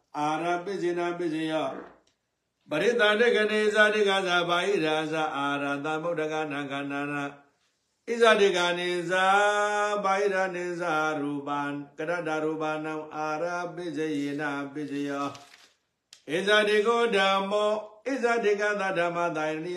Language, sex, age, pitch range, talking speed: English, male, 60-79, 155-205 Hz, 110 wpm